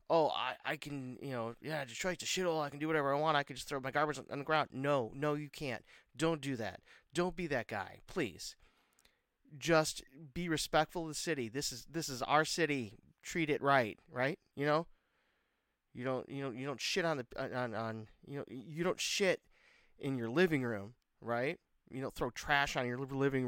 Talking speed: 215 wpm